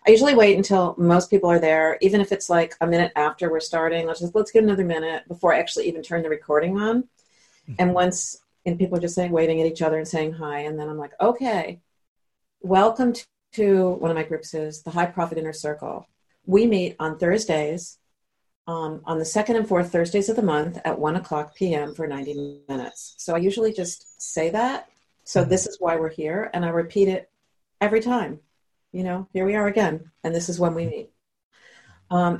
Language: English